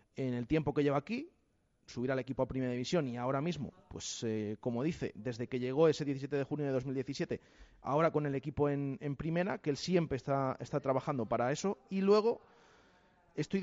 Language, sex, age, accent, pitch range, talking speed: Spanish, male, 30-49, Spanish, 140-195 Hz, 205 wpm